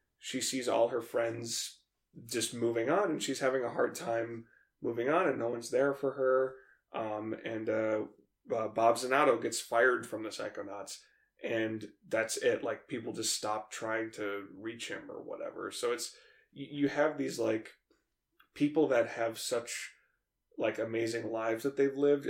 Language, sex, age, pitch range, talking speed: English, male, 20-39, 110-140 Hz, 165 wpm